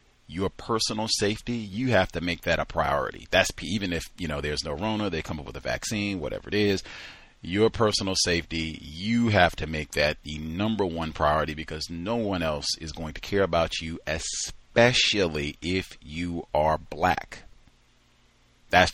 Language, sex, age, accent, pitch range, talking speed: English, male, 40-59, American, 85-115 Hz, 175 wpm